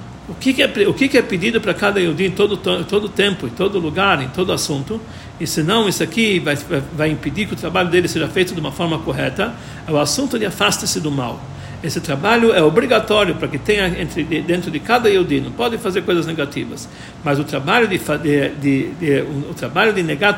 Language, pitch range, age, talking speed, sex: Portuguese, 155-215 Hz, 60-79, 220 wpm, male